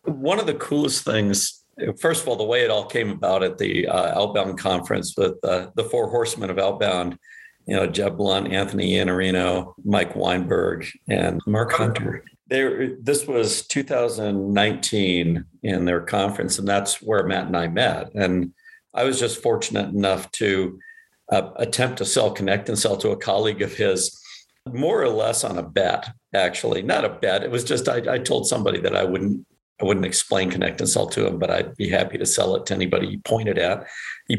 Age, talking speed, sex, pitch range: 50-69, 190 wpm, male, 95-145 Hz